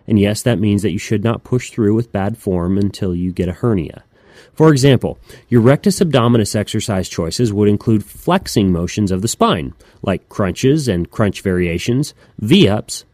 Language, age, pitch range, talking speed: English, 30-49, 100-135 Hz, 175 wpm